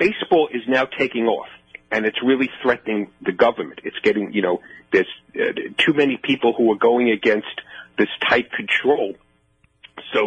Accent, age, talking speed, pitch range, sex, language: American, 40-59, 160 wpm, 100-125 Hz, male, English